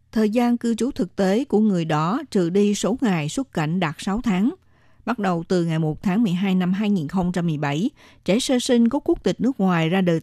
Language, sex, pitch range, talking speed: Vietnamese, female, 170-220 Hz, 215 wpm